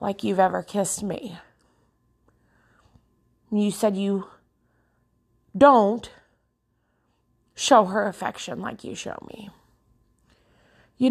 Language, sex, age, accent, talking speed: English, female, 30-49, American, 90 wpm